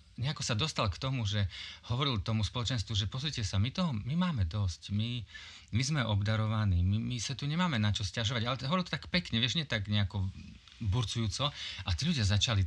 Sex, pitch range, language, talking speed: male, 95-130 Hz, Slovak, 205 wpm